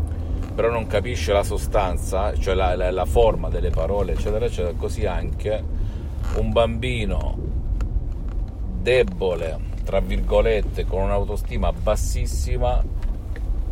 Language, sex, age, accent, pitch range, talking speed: Italian, male, 50-69, native, 80-100 Hz, 105 wpm